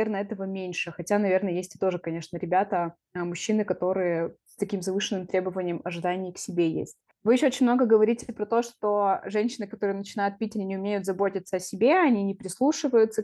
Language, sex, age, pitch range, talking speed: Russian, female, 20-39, 185-220 Hz, 185 wpm